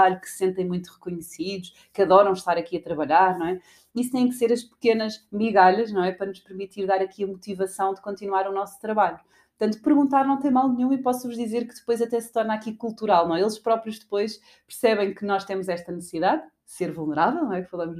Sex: female